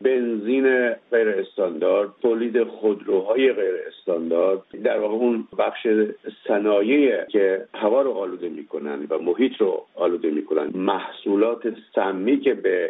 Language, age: Persian, 50-69